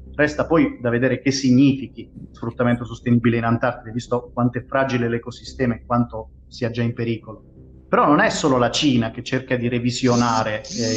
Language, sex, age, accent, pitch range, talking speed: Italian, male, 30-49, native, 115-140 Hz, 175 wpm